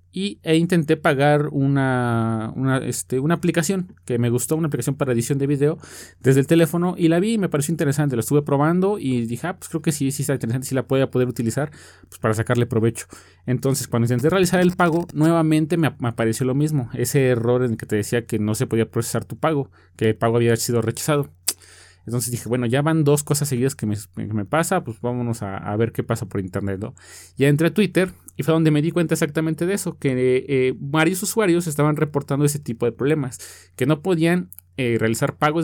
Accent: Mexican